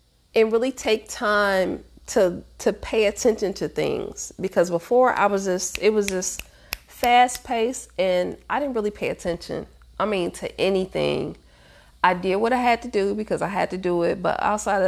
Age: 30-49